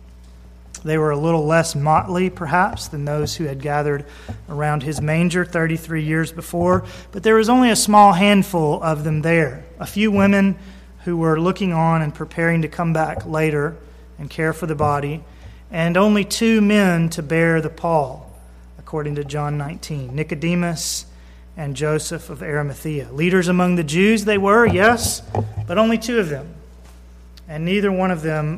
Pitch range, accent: 145-185 Hz, American